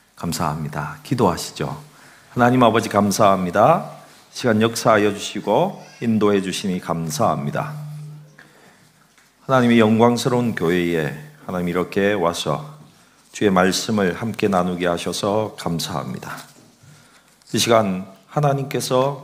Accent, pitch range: native, 95-125 Hz